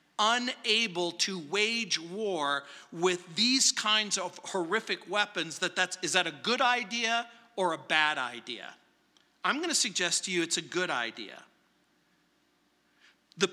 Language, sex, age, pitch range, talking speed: English, male, 40-59, 160-220 Hz, 140 wpm